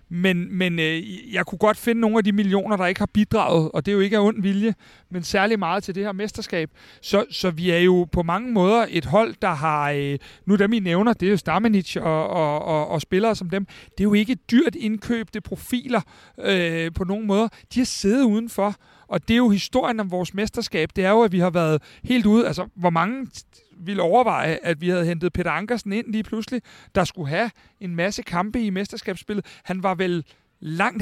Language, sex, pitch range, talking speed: Danish, male, 180-220 Hz, 225 wpm